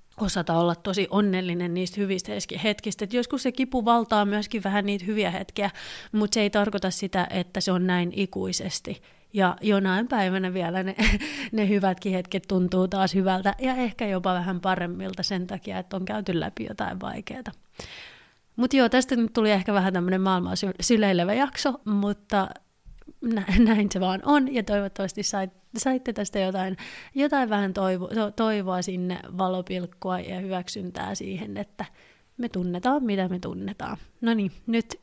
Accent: native